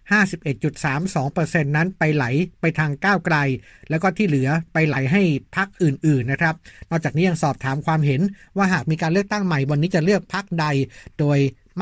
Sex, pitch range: male, 145-180 Hz